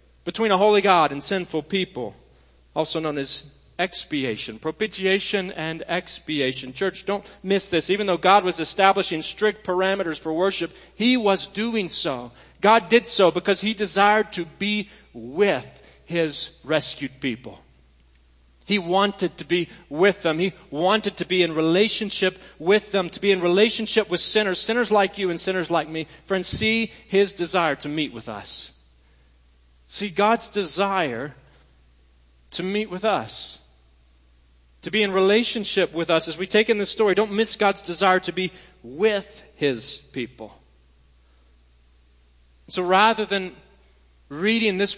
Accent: American